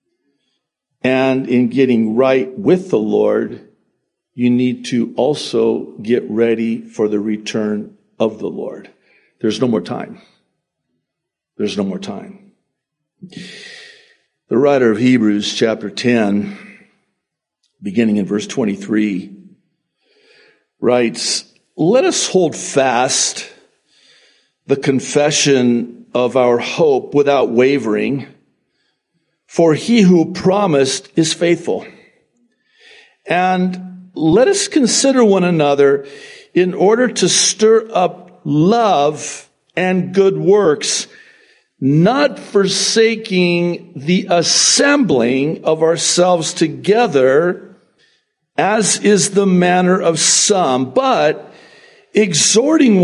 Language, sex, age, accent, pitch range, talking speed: English, male, 50-69, American, 135-220 Hz, 95 wpm